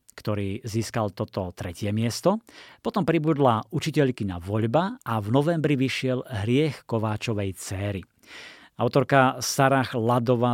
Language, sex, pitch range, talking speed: Slovak, male, 110-135 Hz, 115 wpm